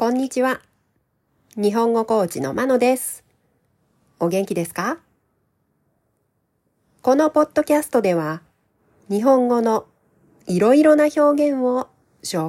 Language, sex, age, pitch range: Japanese, female, 40-59, 160-255 Hz